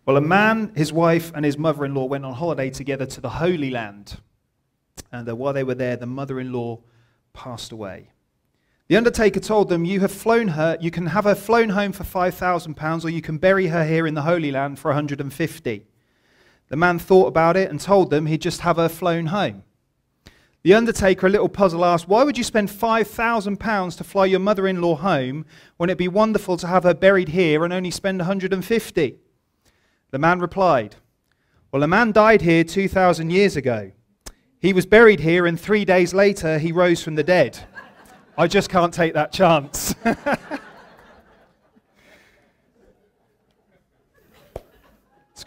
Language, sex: English, male